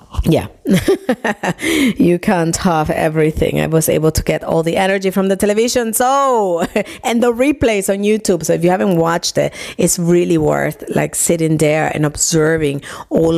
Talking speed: 165 wpm